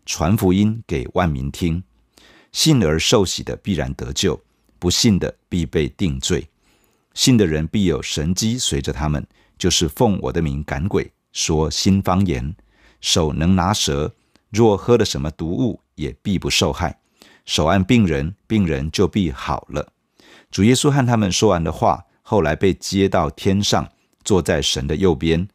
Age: 50-69